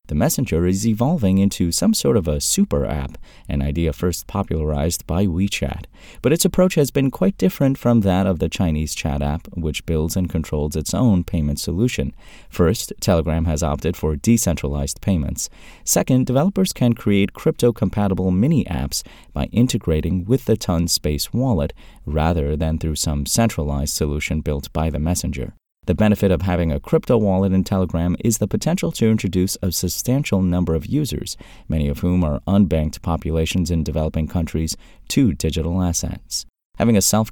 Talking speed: 165 wpm